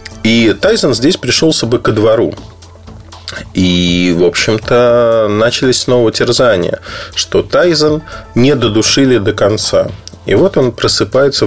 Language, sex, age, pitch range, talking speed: Russian, male, 30-49, 95-115 Hz, 120 wpm